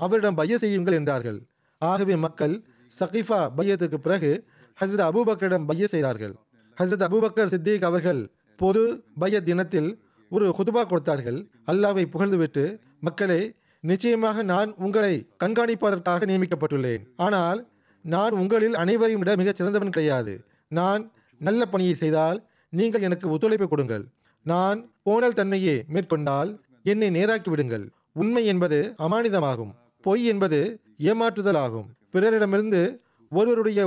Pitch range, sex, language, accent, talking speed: 155-210 Hz, male, Tamil, native, 110 wpm